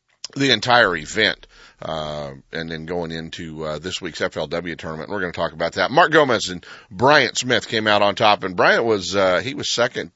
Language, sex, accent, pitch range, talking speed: English, male, American, 85-115 Hz, 205 wpm